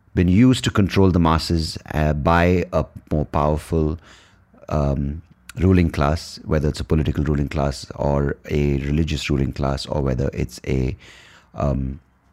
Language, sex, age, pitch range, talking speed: English, male, 30-49, 75-95 Hz, 145 wpm